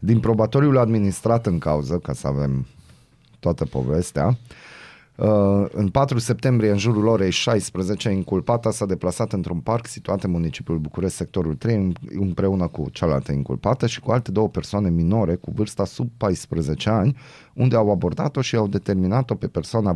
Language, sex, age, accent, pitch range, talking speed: Romanian, male, 30-49, native, 85-120 Hz, 155 wpm